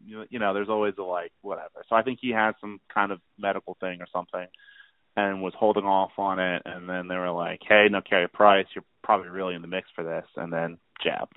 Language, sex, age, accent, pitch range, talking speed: English, male, 30-49, American, 95-115 Hz, 240 wpm